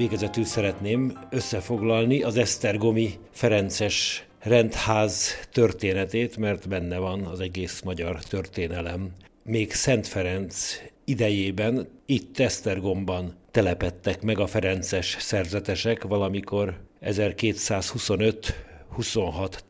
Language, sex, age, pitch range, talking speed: Hungarian, male, 60-79, 95-110 Hz, 85 wpm